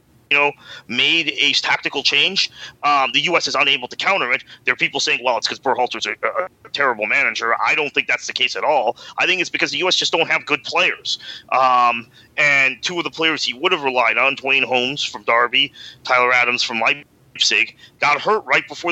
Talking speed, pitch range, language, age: 225 wpm, 120-165 Hz, English, 30-49